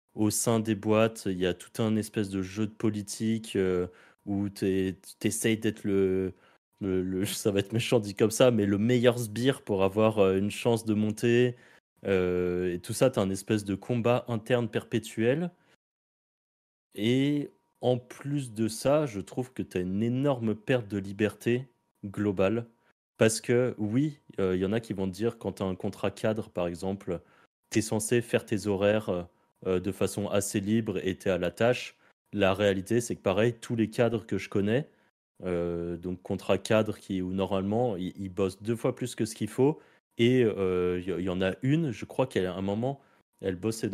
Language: French